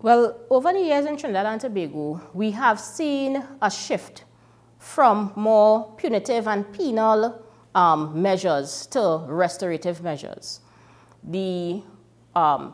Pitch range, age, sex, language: 150-195 Hz, 30-49, female, English